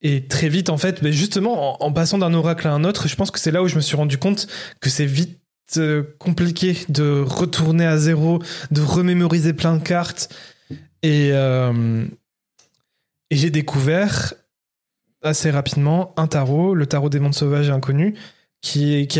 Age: 20-39